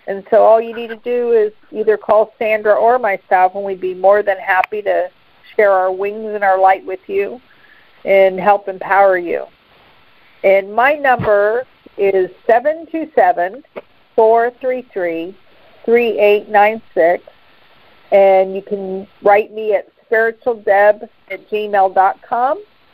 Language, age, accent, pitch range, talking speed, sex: English, 50-69, American, 195-235 Hz, 120 wpm, female